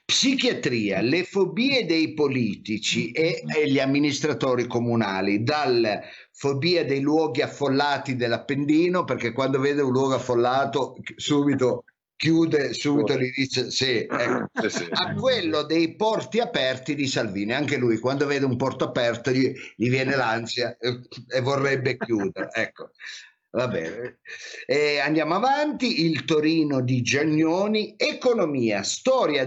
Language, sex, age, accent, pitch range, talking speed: Italian, male, 50-69, native, 125-165 Hz, 130 wpm